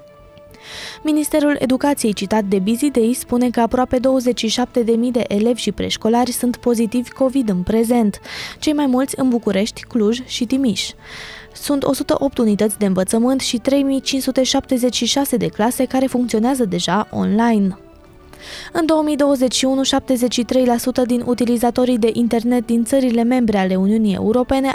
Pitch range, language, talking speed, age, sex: 215-260 Hz, Romanian, 125 wpm, 20-39, female